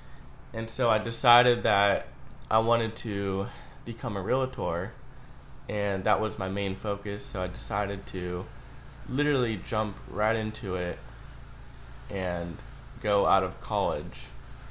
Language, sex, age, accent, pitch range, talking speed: English, male, 20-39, American, 95-115 Hz, 125 wpm